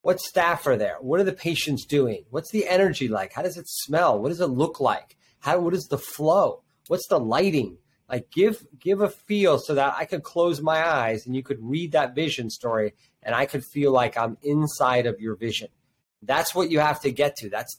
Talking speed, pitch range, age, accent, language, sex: 225 wpm, 120-150 Hz, 30-49, American, English, male